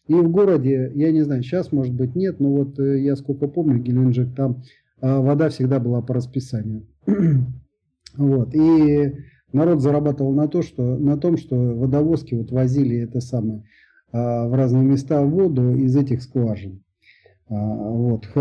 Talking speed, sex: 155 wpm, male